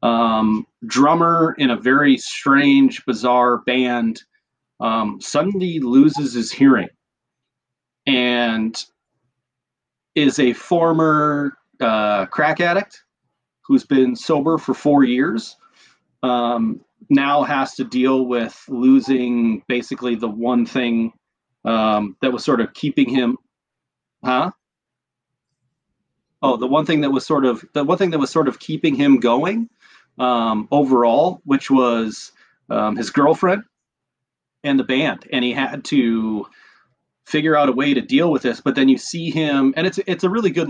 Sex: male